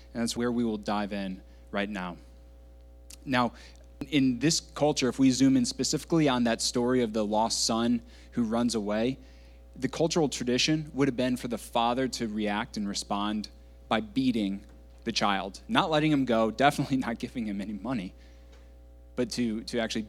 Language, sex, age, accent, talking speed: English, male, 20-39, American, 175 wpm